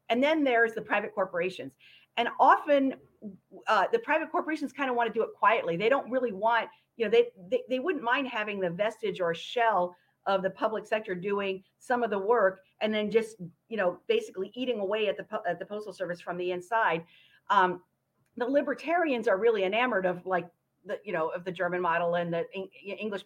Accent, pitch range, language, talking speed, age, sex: American, 180-230 Hz, English, 205 wpm, 50-69, female